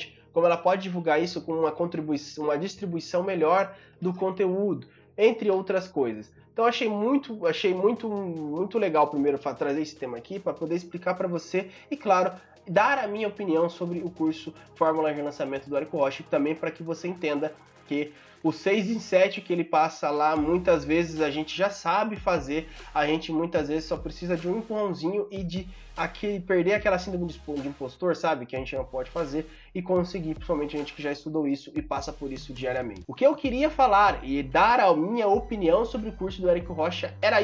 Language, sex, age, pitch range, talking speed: Portuguese, male, 20-39, 155-200 Hz, 195 wpm